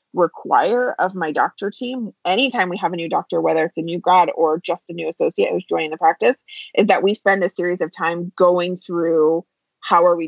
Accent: American